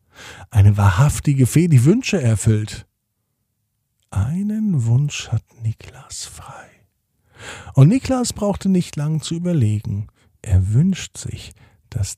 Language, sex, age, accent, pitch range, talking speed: German, male, 50-69, German, 105-155 Hz, 110 wpm